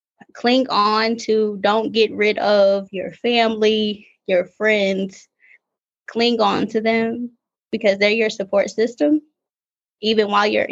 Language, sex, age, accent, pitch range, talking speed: English, female, 20-39, American, 215-290 Hz, 130 wpm